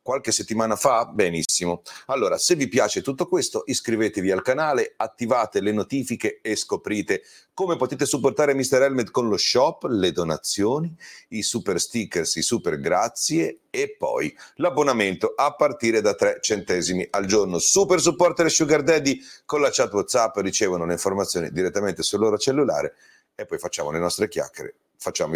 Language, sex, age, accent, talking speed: Italian, male, 40-59, native, 155 wpm